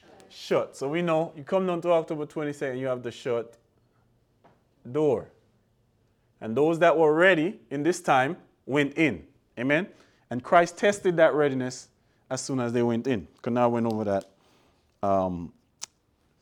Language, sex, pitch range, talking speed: English, male, 125-180 Hz, 155 wpm